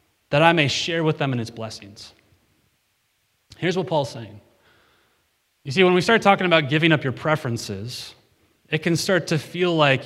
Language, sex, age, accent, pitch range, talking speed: English, male, 30-49, American, 125-170 Hz, 180 wpm